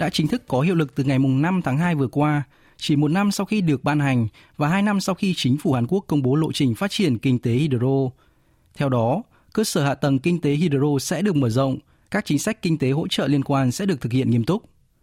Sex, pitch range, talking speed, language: male, 130-170 Hz, 270 wpm, Vietnamese